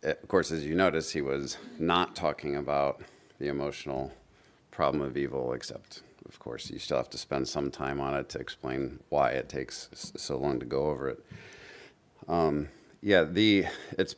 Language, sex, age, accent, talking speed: English, male, 40-59, American, 180 wpm